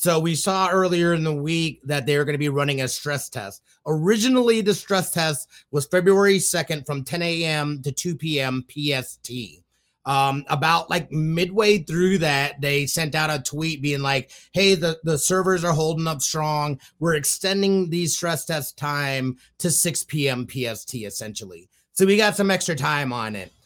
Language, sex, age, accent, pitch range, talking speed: English, male, 30-49, American, 145-190 Hz, 180 wpm